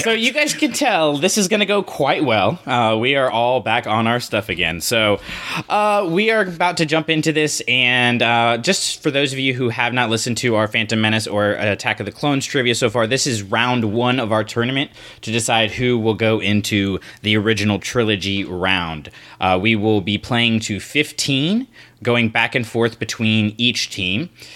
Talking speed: 205 wpm